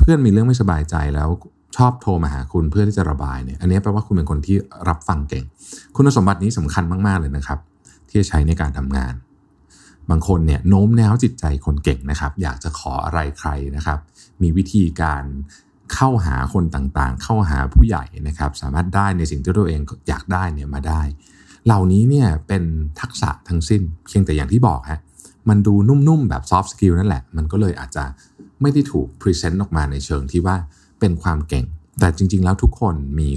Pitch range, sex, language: 75-100 Hz, male, Thai